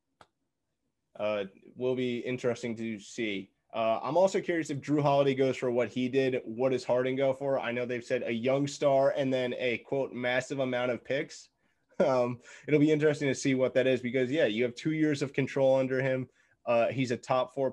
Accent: American